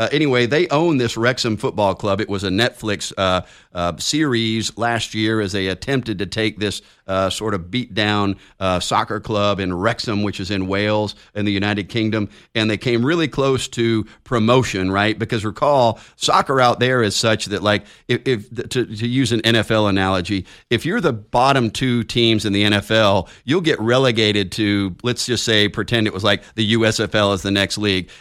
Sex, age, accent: male, 40-59, American